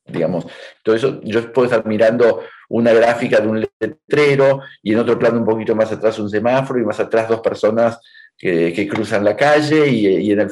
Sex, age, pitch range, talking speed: male, 50-69, 115-145 Hz, 200 wpm